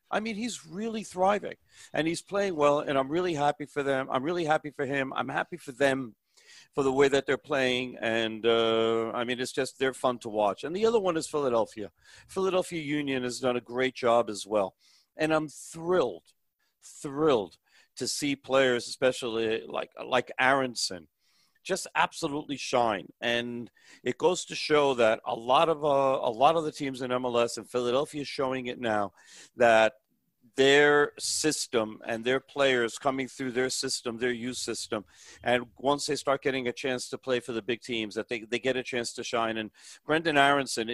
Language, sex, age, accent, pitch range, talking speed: English, male, 50-69, American, 115-145 Hz, 190 wpm